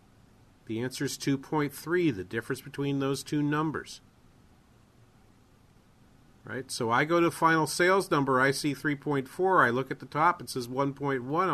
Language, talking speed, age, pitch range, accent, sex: English, 150 wpm, 40-59, 125-155 Hz, American, male